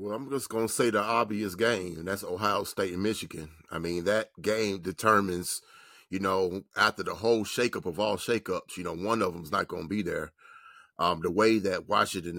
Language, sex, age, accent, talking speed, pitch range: English, male, 30-49, American, 215 wpm, 90-110 Hz